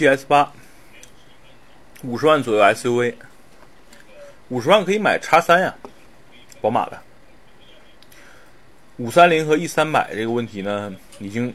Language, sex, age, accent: Chinese, male, 30-49, native